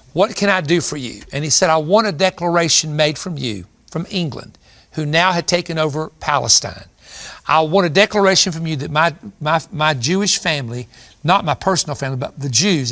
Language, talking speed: English, 200 wpm